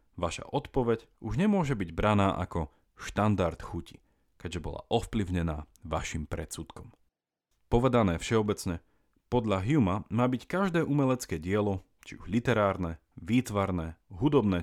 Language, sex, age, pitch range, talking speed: Slovak, male, 30-49, 85-120 Hz, 115 wpm